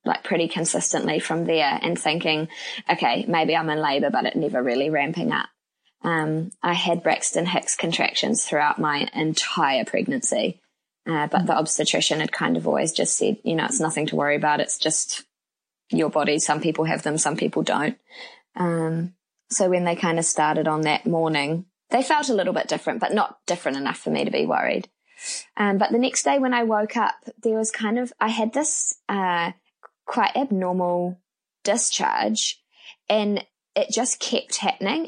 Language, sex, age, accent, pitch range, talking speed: English, female, 20-39, Australian, 165-225 Hz, 180 wpm